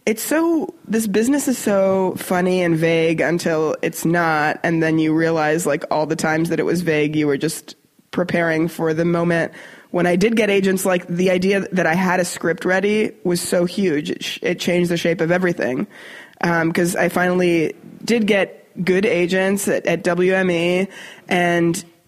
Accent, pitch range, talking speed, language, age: American, 160-185 Hz, 185 wpm, English, 20-39